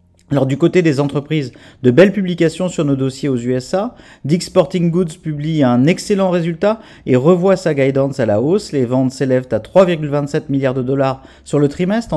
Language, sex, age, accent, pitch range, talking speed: French, male, 40-59, French, 130-170 Hz, 190 wpm